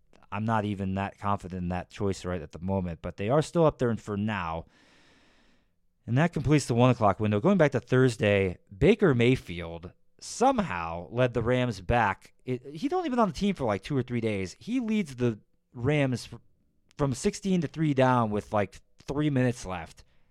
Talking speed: 190 wpm